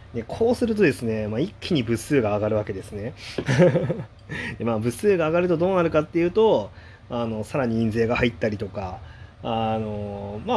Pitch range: 105-145 Hz